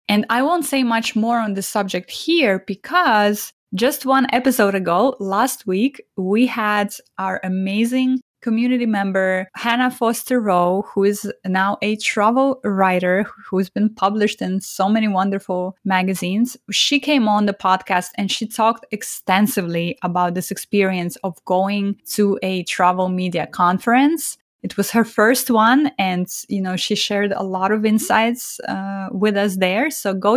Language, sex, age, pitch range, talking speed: English, female, 20-39, 190-245 Hz, 155 wpm